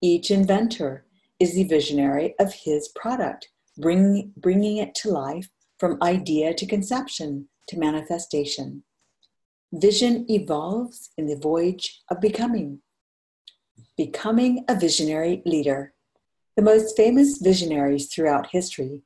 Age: 50-69